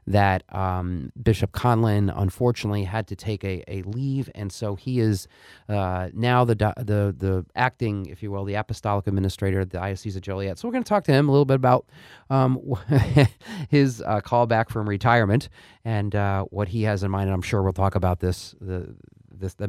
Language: English